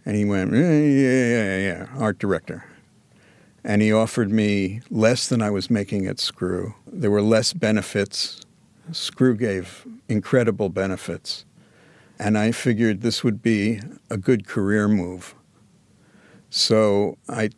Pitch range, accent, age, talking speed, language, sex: 105-125 Hz, American, 50-69, 135 wpm, English, male